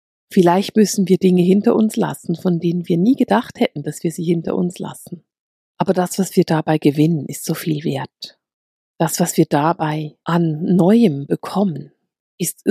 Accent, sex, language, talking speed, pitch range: German, female, German, 175 wpm, 160-195 Hz